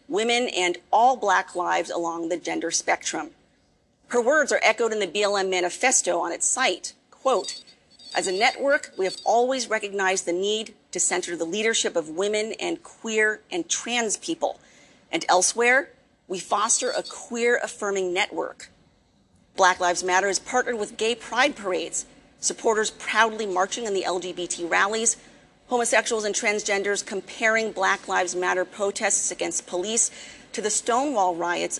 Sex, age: female, 40-59